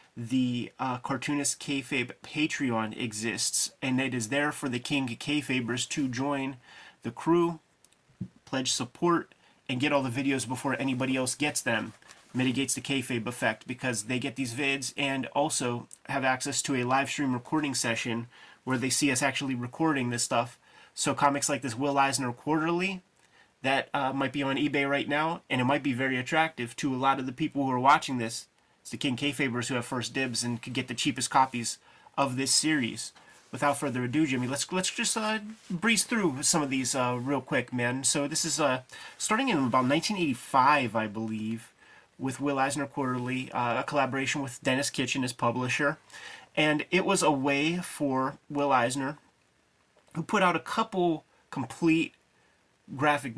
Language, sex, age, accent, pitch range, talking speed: English, male, 30-49, American, 125-145 Hz, 180 wpm